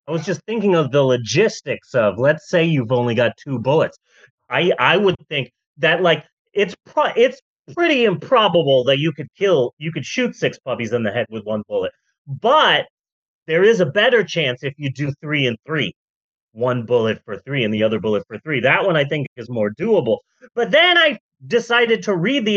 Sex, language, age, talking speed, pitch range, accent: male, English, 30-49, 205 wpm, 150-245 Hz, American